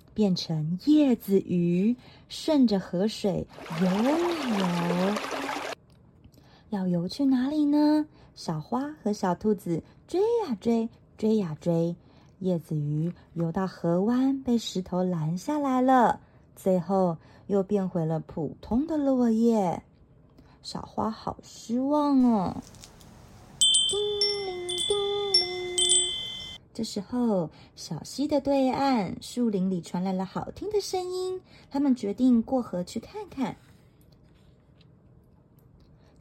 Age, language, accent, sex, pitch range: 30-49, Chinese, native, female, 185-305 Hz